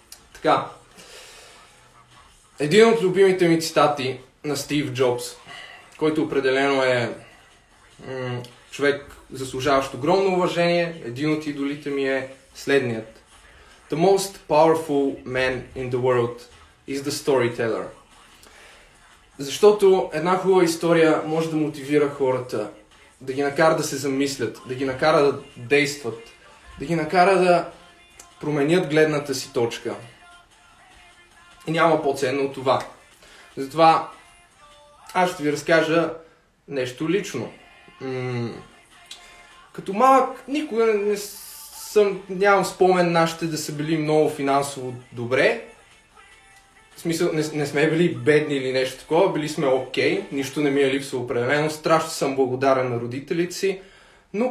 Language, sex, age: Bulgarian, male, 20-39